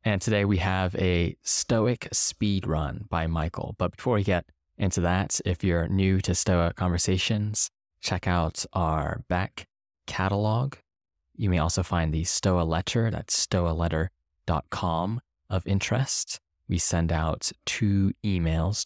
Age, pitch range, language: 20-39, 85-100 Hz, English